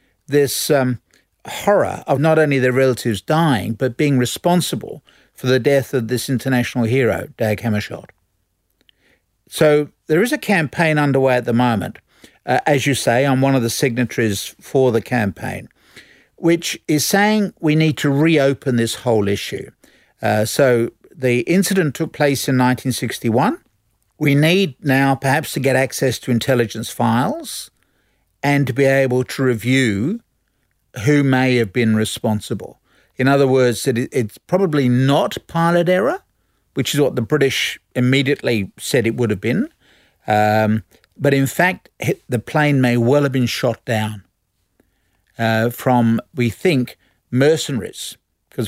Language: English